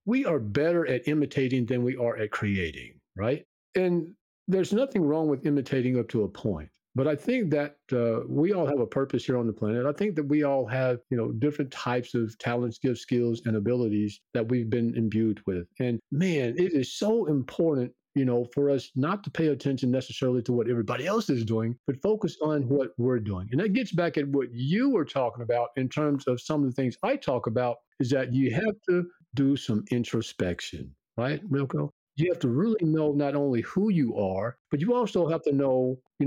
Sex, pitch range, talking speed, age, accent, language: male, 120-165 Hz, 215 wpm, 50-69, American, English